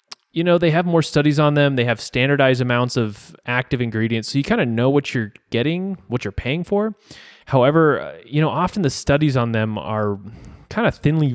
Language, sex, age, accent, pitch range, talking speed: English, male, 20-39, American, 115-155 Hz, 205 wpm